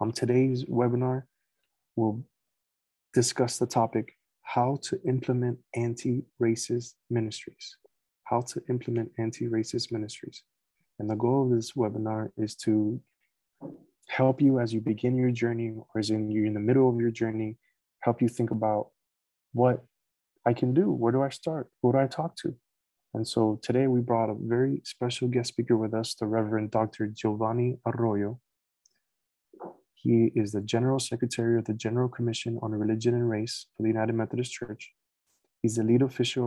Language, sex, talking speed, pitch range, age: English, male, 160 wpm, 110-125 Hz, 20-39